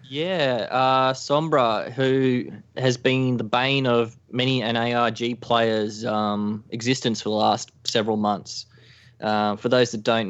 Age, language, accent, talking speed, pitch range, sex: 20-39, English, Australian, 140 wpm, 110-130 Hz, male